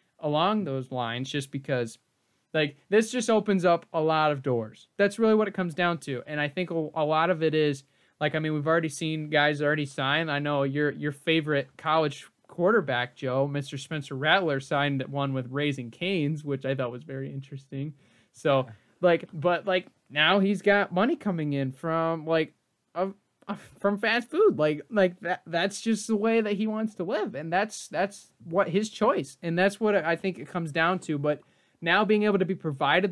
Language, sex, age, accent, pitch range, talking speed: English, male, 20-39, American, 140-185 Hz, 200 wpm